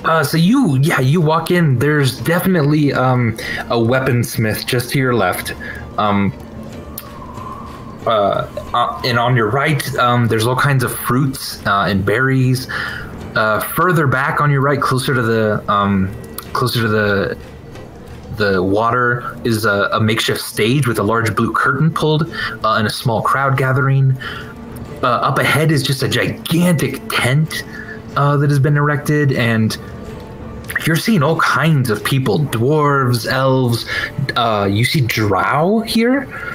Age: 20-39